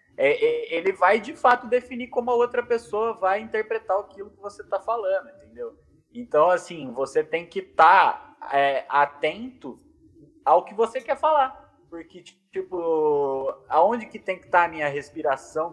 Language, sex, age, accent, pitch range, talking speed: Portuguese, male, 20-39, Brazilian, 160-230 Hz, 150 wpm